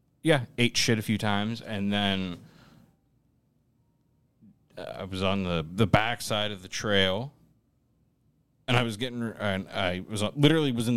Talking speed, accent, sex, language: 155 wpm, American, male, English